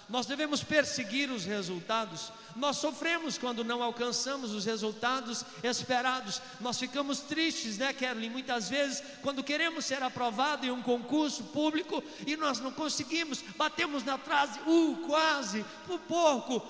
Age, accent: 50-69, Brazilian